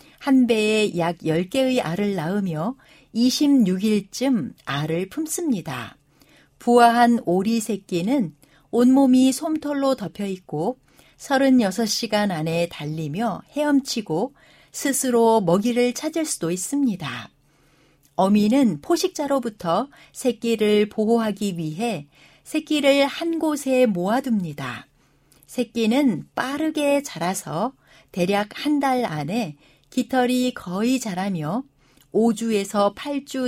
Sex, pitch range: female, 180-255 Hz